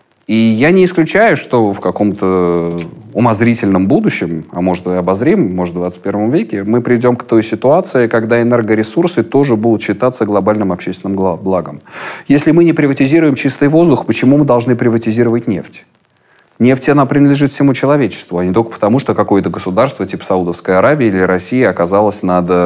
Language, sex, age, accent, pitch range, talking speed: Russian, male, 30-49, native, 100-140 Hz, 160 wpm